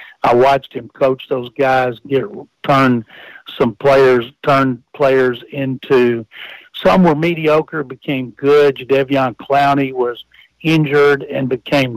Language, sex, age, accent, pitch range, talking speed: English, male, 60-79, American, 130-150 Hz, 120 wpm